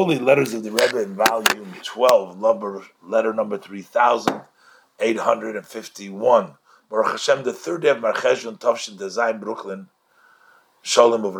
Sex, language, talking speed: male, English, 85 wpm